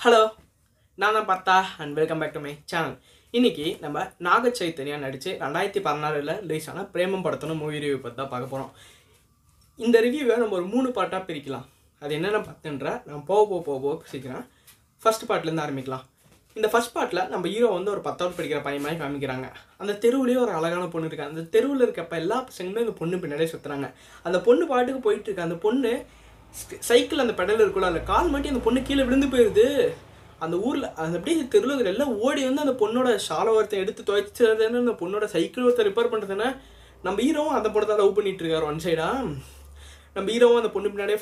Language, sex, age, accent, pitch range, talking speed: Tamil, female, 20-39, native, 160-235 Hz, 180 wpm